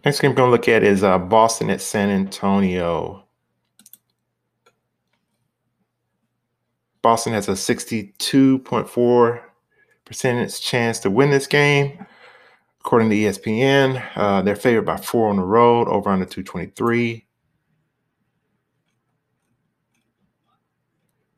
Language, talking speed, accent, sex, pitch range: English, 100 wpm, American, male, 95-120 Hz